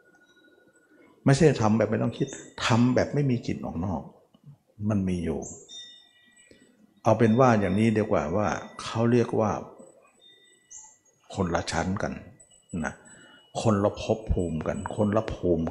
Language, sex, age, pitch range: Thai, male, 60-79, 95-125 Hz